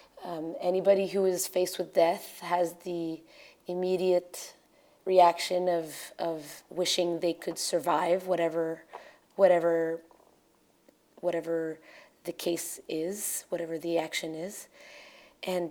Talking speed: 105 wpm